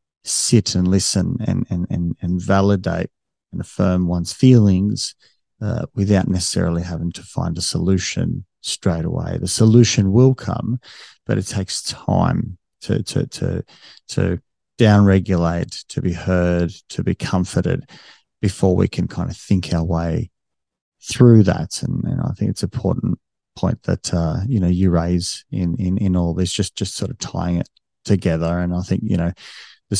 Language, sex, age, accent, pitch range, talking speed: English, male, 30-49, Australian, 85-100 Hz, 165 wpm